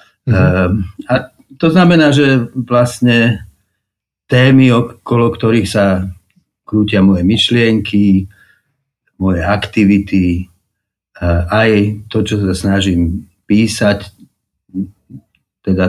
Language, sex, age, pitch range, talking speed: Slovak, male, 50-69, 100-120 Hz, 85 wpm